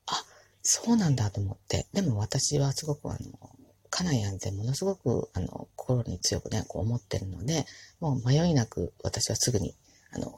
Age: 40-59